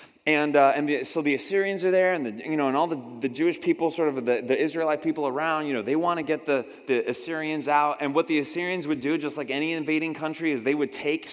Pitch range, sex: 140-180 Hz, male